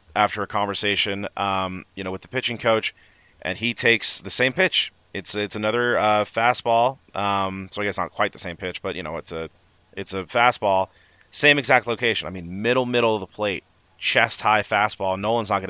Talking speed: 205 wpm